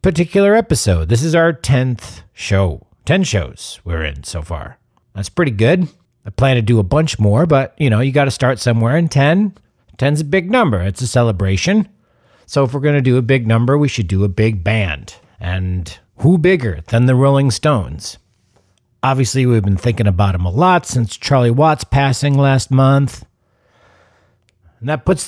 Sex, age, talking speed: male, 50-69, 190 wpm